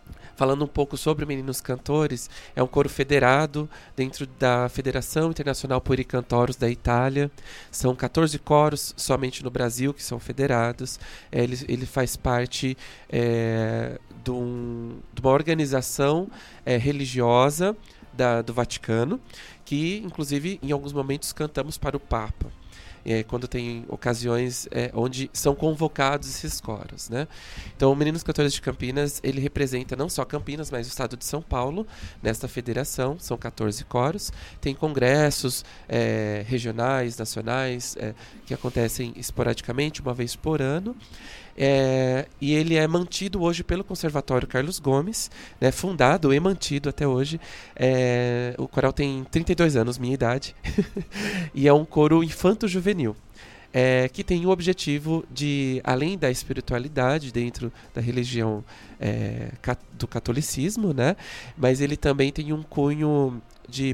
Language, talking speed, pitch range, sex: Portuguese, 135 wpm, 120-150 Hz, male